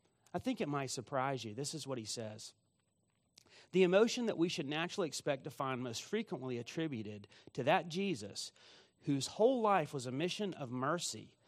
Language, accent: English, American